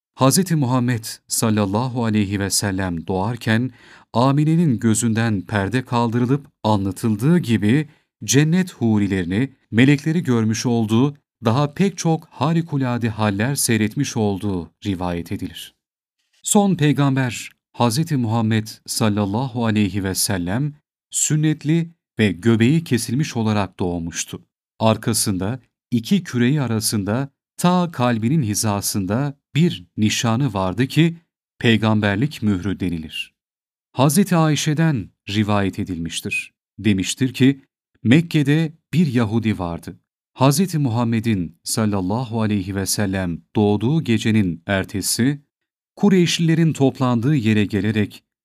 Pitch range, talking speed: 105-140 Hz, 95 wpm